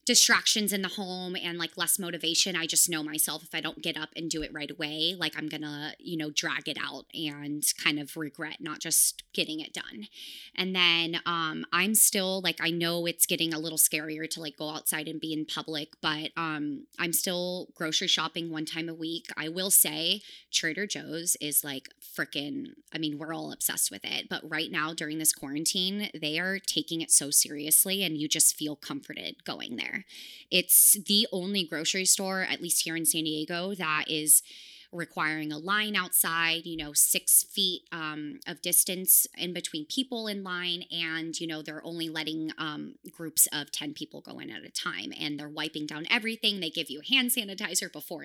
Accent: American